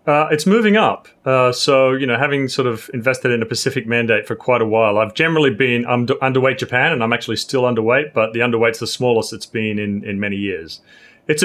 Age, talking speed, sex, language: 30-49, 230 wpm, male, English